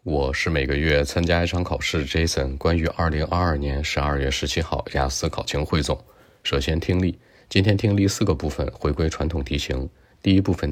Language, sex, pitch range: Chinese, male, 75-90 Hz